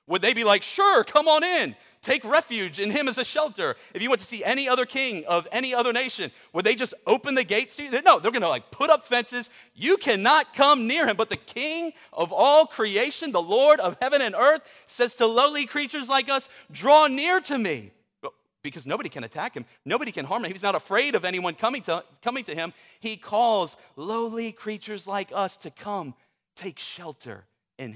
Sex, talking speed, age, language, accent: male, 215 wpm, 40-59, English, American